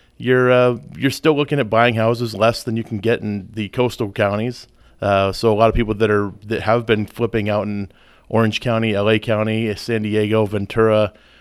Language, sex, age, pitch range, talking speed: English, male, 30-49, 105-115 Hz, 200 wpm